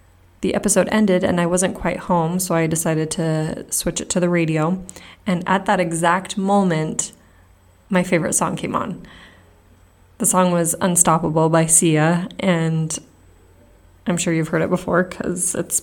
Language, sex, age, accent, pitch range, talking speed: English, female, 20-39, American, 165-200 Hz, 160 wpm